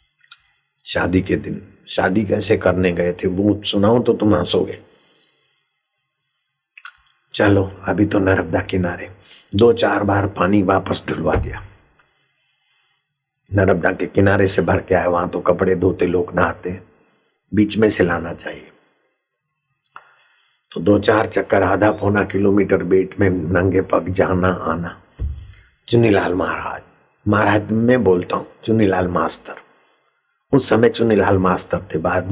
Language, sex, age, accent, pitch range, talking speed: Hindi, male, 60-79, native, 90-105 Hz, 130 wpm